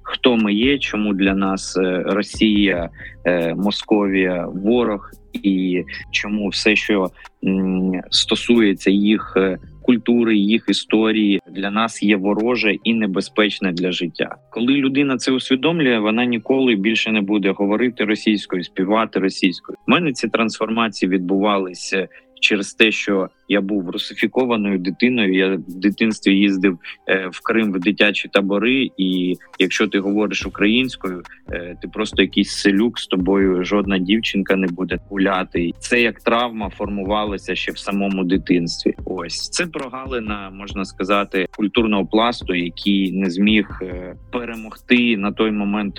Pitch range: 95-110 Hz